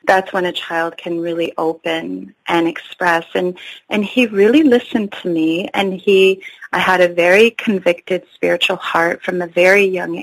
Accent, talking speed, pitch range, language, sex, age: American, 170 wpm, 175-200 Hz, English, female, 30-49